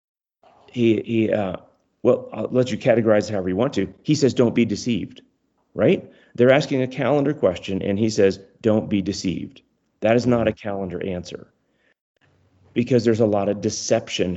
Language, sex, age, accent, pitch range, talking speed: English, male, 40-59, American, 105-135 Hz, 170 wpm